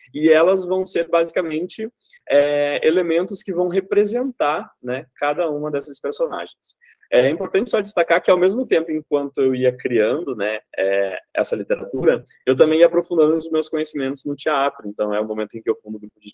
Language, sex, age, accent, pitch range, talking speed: Portuguese, male, 20-39, Brazilian, 130-170 Hz, 185 wpm